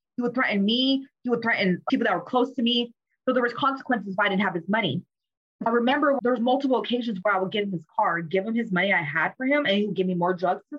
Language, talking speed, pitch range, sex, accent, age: English, 285 wpm, 180-265 Hz, female, American, 20-39